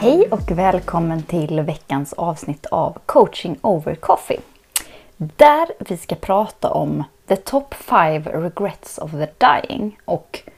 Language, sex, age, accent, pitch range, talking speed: Swedish, female, 20-39, native, 170-235 Hz, 130 wpm